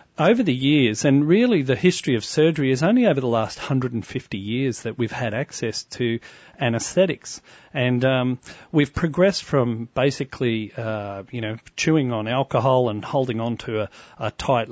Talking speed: 165 wpm